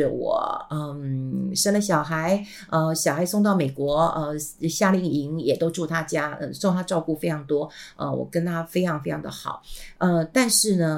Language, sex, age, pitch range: Chinese, female, 50-69, 155-200 Hz